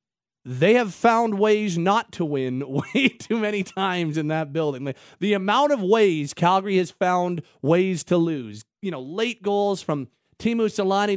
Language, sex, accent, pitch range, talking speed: English, male, American, 140-195 Hz, 165 wpm